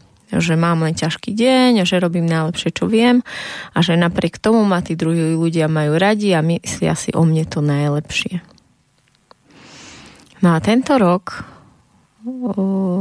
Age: 20-39